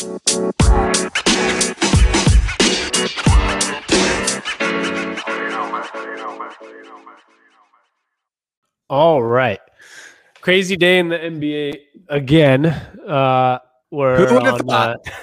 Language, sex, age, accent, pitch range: English, male, 20-39, American, 135-170 Hz